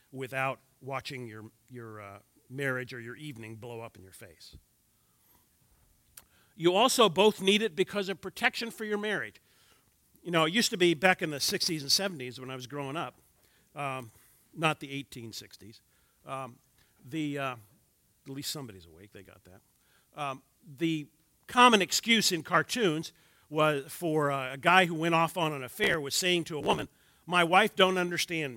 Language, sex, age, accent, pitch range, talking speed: English, male, 50-69, American, 125-180 Hz, 170 wpm